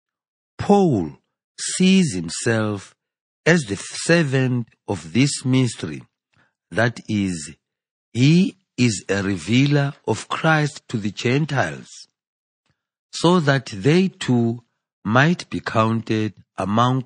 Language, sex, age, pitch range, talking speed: English, male, 50-69, 105-140 Hz, 100 wpm